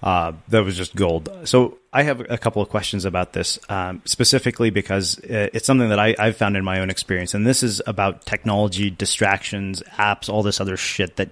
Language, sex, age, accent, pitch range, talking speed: English, male, 30-49, American, 100-125 Hz, 205 wpm